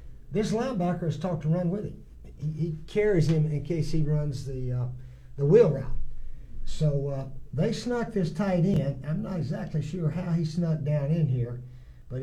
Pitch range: 130-165 Hz